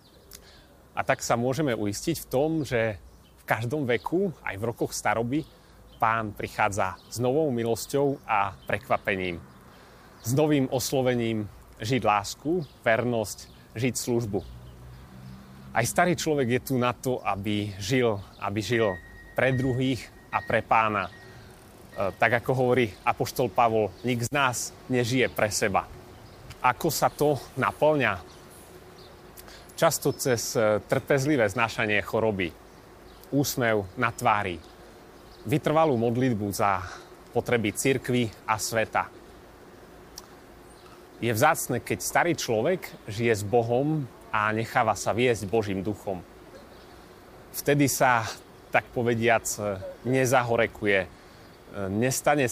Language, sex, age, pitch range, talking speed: Slovak, male, 30-49, 100-125 Hz, 110 wpm